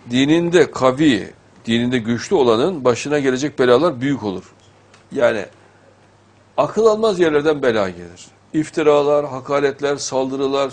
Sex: male